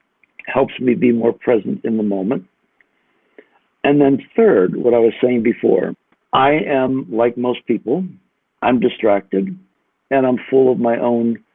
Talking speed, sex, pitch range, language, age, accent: 150 wpm, male, 110-130 Hz, English, 60-79, American